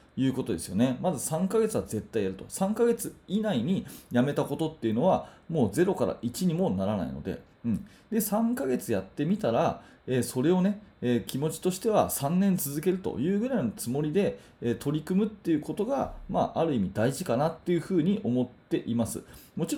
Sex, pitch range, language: male, 120-195 Hz, Japanese